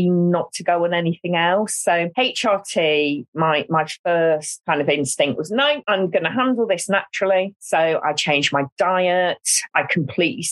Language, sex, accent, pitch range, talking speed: English, female, British, 155-190 Hz, 165 wpm